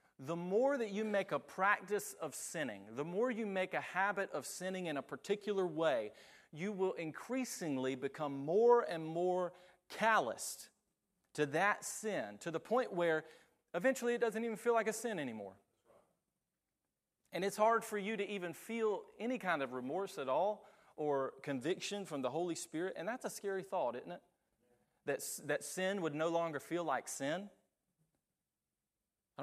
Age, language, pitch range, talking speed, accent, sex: 30-49, English, 150-205 Hz, 165 wpm, American, male